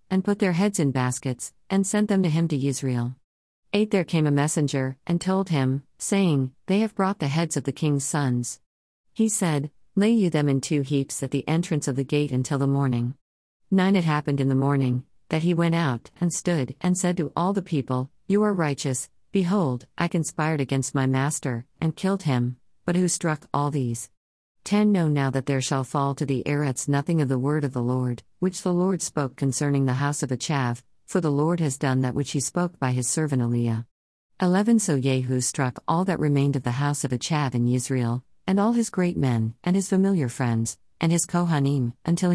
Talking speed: 210 wpm